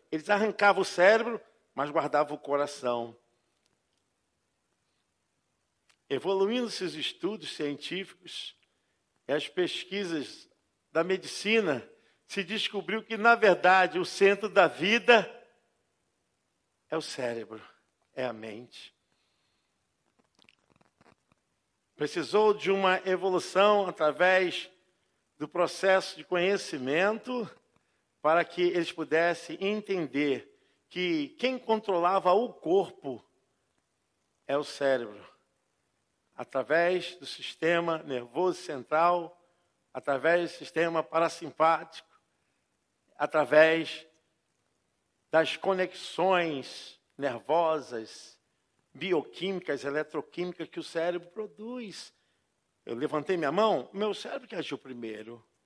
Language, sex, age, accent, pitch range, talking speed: Portuguese, male, 50-69, Brazilian, 150-200 Hz, 90 wpm